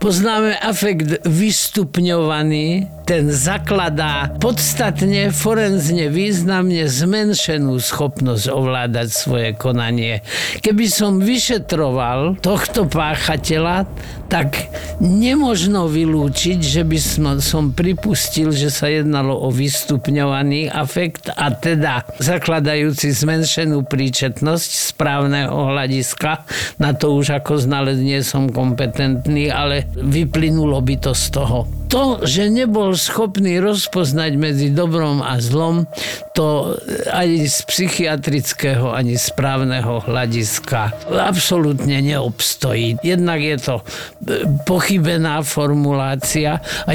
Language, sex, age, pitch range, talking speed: Slovak, male, 50-69, 140-175 Hz, 95 wpm